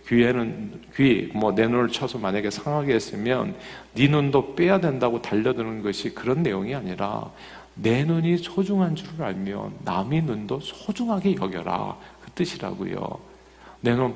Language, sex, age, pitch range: Korean, male, 50-69, 105-150 Hz